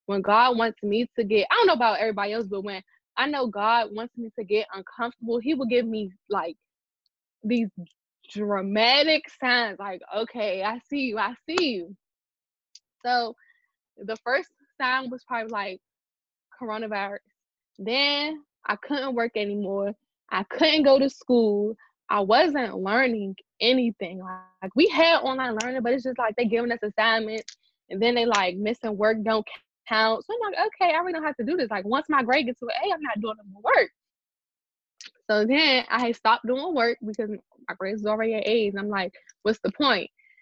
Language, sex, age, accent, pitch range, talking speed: English, female, 10-29, American, 205-260 Hz, 185 wpm